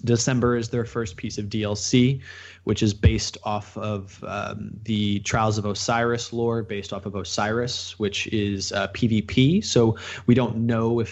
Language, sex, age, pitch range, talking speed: English, male, 20-39, 100-115 Hz, 165 wpm